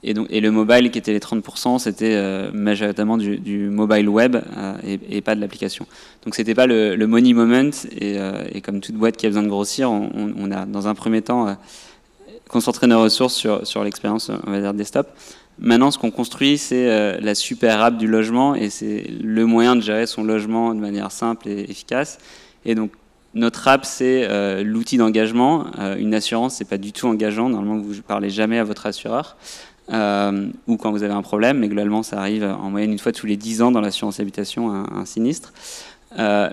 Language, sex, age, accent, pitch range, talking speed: French, male, 20-39, French, 100-115 Hz, 215 wpm